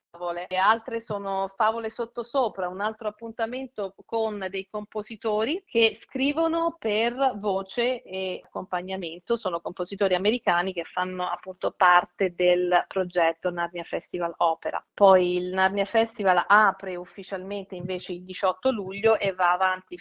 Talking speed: 125 wpm